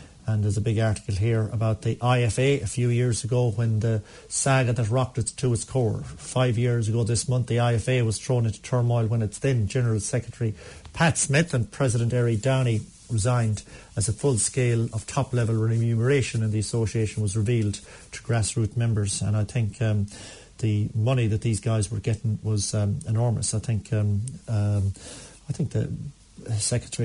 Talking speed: 180 wpm